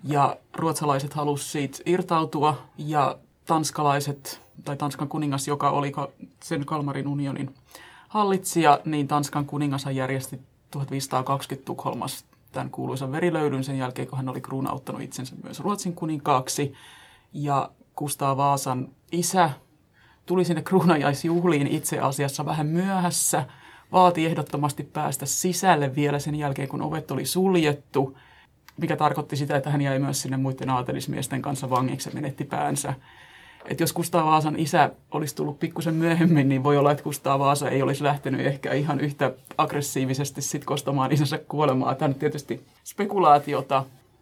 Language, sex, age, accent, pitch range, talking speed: Finnish, male, 30-49, native, 135-155 Hz, 135 wpm